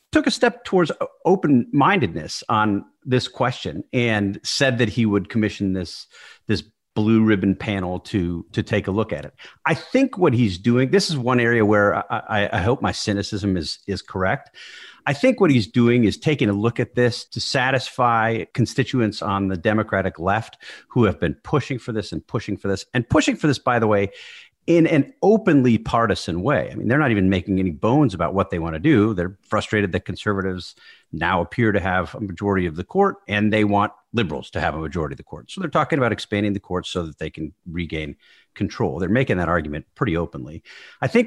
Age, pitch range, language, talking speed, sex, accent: 40-59, 95-120 Hz, English, 210 wpm, male, American